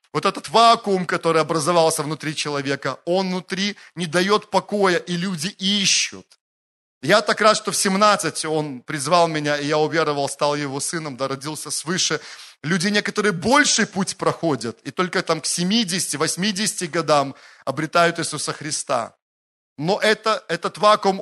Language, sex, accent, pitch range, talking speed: Russian, male, native, 155-210 Hz, 140 wpm